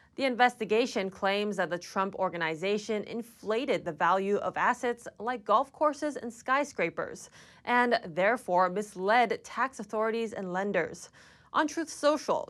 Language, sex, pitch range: English, female, 195-245 Hz